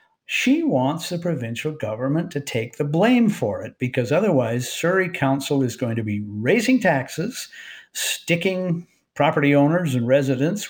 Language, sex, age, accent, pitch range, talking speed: English, male, 50-69, American, 125-160 Hz, 145 wpm